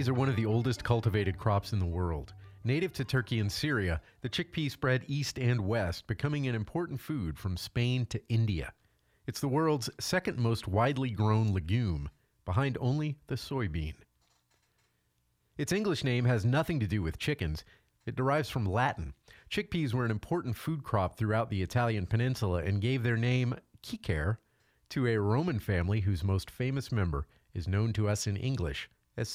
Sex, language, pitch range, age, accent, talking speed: male, English, 95-130 Hz, 40-59, American, 175 wpm